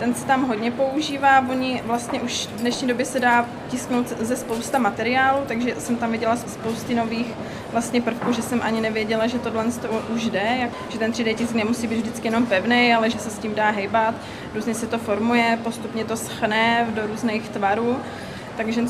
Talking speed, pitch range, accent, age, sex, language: 195 wpm, 225-250 Hz, native, 20-39, female, Czech